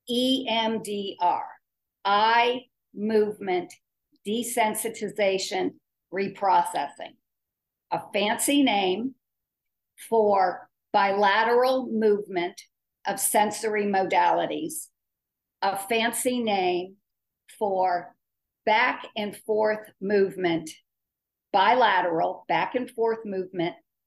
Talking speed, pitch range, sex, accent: 65 wpm, 185-230 Hz, female, American